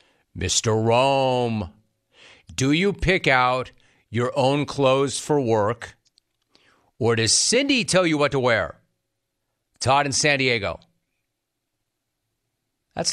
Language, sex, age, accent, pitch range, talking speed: English, male, 40-59, American, 110-140 Hz, 110 wpm